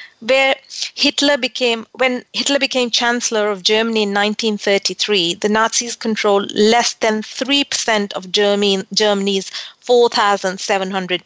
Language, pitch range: English, 205-250 Hz